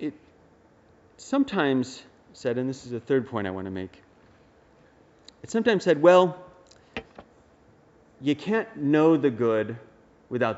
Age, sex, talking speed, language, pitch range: 30-49, male, 125 wpm, English, 110-145 Hz